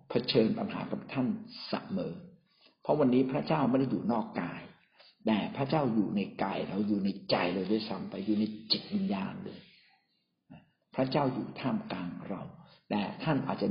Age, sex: 60-79, male